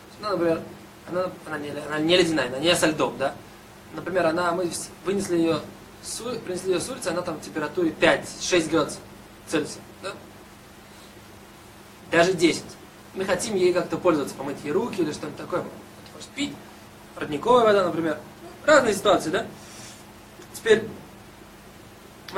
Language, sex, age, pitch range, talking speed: Russian, male, 20-39, 170-210 Hz, 135 wpm